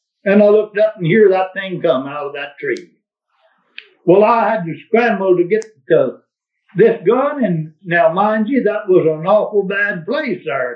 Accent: American